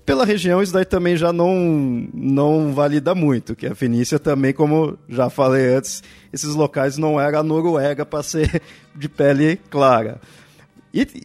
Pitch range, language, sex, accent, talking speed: 135-185 Hz, Portuguese, male, Brazilian, 155 wpm